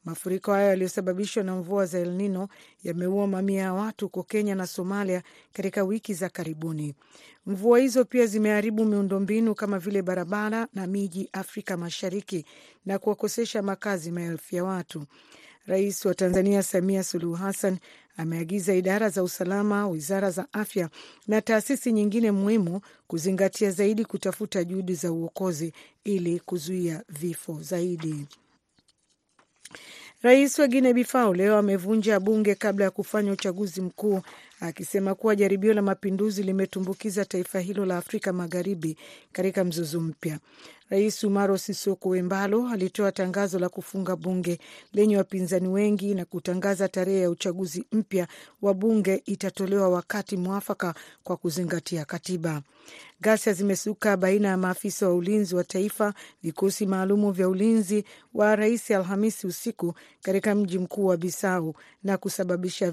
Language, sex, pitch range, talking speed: Swahili, female, 180-205 Hz, 130 wpm